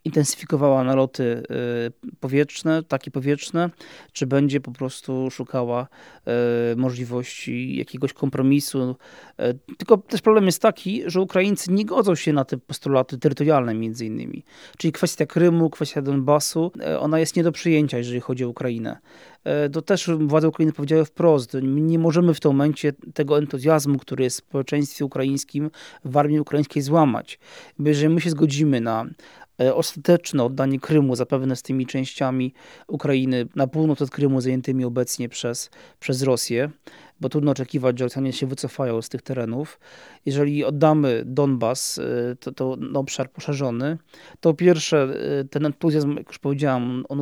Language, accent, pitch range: Polish, native, 130-155 Hz